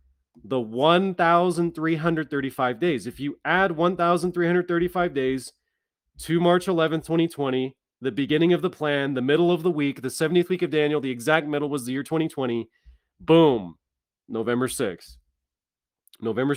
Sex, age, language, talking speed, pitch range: male, 30-49, English, 140 wpm, 130-165 Hz